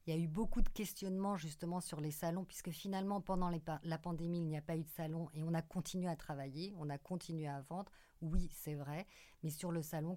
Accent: French